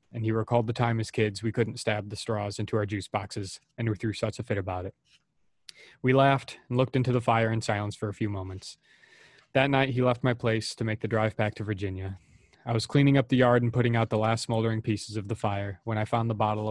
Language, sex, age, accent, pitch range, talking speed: English, male, 20-39, American, 105-120 Hz, 255 wpm